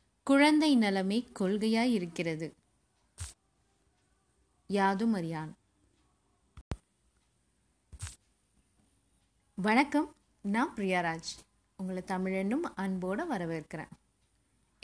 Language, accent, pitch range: Tamil, native, 185-250 Hz